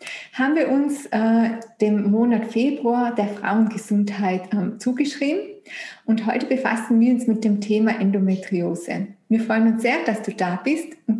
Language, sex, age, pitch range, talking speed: German, female, 20-39, 200-250 Hz, 155 wpm